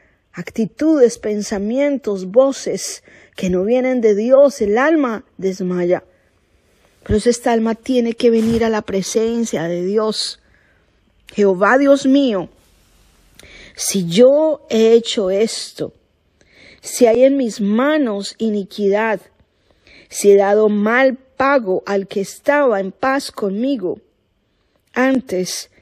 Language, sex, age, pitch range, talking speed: Spanish, female, 40-59, 195-265 Hz, 115 wpm